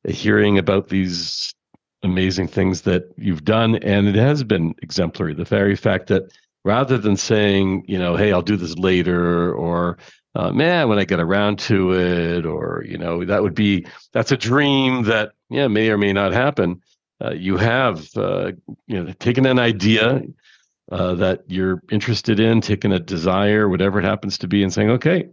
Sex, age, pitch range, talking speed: male, 50-69, 95-120 Hz, 180 wpm